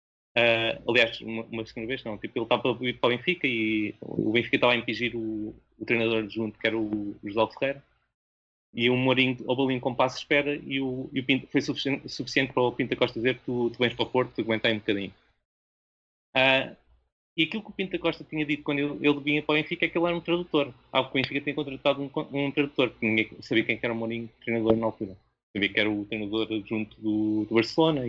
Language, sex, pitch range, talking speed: Portuguese, male, 110-150 Hz, 235 wpm